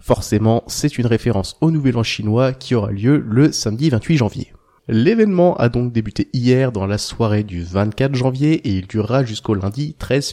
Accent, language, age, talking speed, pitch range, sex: French, French, 20-39, 185 wpm, 110-140 Hz, male